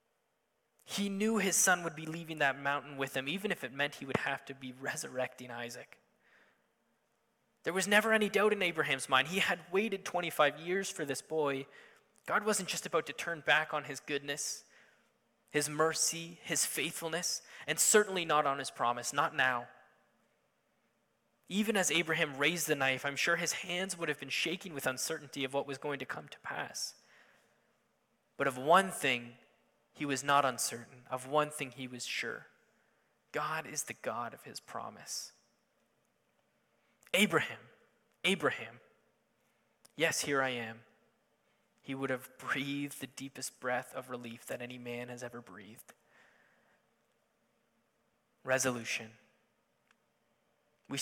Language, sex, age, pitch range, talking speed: English, male, 20-39, 130-165 Hz, 150 wpm